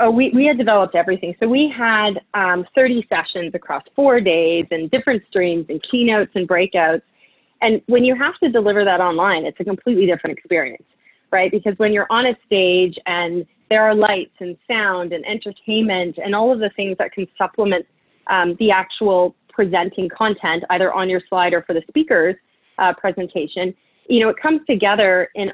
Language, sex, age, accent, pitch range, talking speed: English, female, 30-49, American, 180-230 Hz, 185 wpm